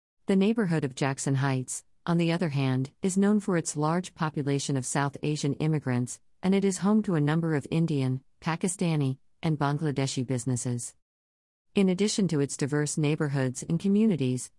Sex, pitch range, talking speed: female, 130-170 Hz, 165 wpm